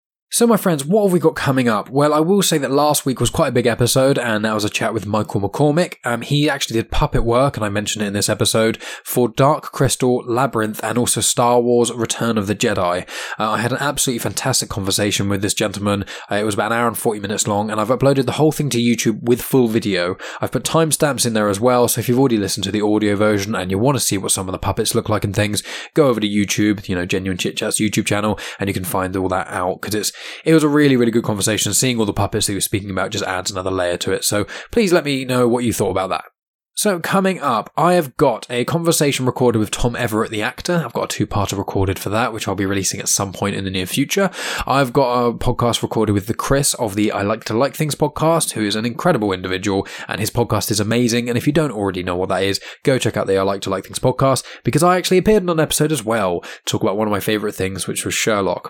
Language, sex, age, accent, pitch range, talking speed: English, male, 10-29, British, 105-140 Hz, 270 wpm